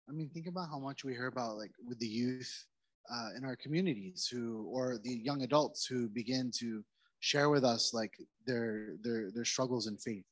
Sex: male